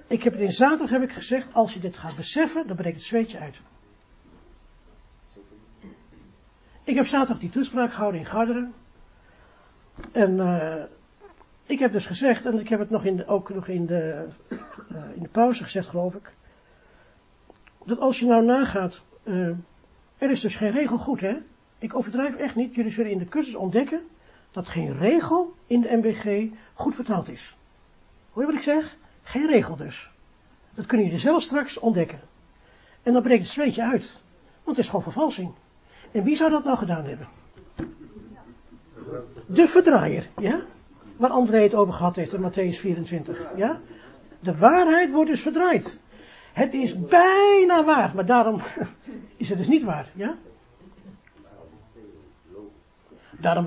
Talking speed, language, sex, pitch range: 165 wpm, Dutch, male, 195-265 Hz